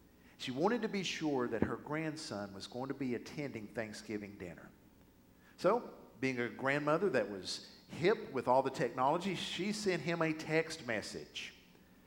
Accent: American